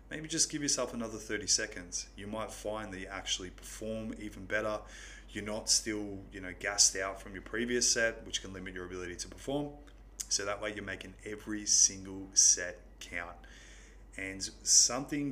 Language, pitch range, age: English, 95-110 Hz, 20-39